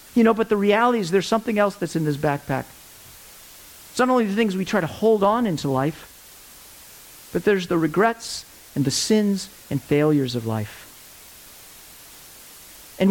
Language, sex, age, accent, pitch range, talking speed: English, male, 50-69, American, 155-225 Hz, 170 wpm